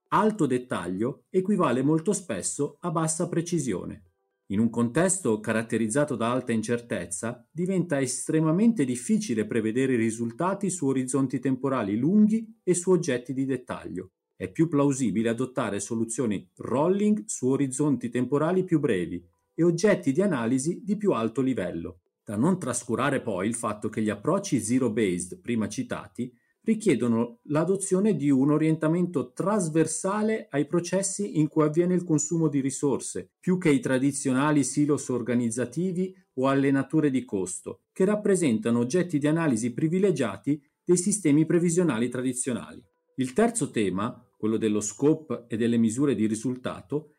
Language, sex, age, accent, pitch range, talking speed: Italian, male, 40-59, native, 120-175 Hz, 135 wpm